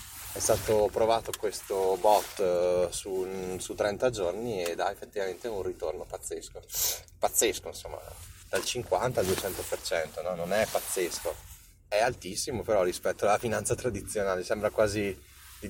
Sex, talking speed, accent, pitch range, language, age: male, 140 wpm, native, 85-110 Hz, Italian, 30-49